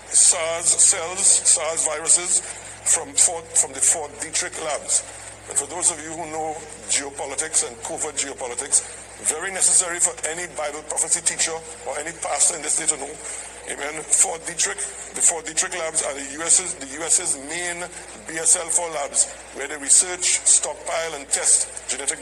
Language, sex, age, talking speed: English, male, 60-79, 155 wpm